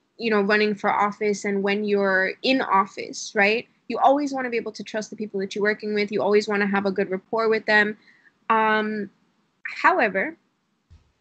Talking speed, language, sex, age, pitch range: 200 wpm, English, female, 10-29, 200-255 Hz